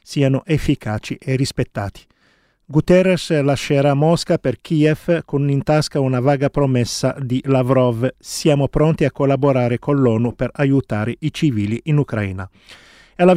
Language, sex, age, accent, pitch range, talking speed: Italian, male, 40-59, native, 130-155 Hz, 135 wpm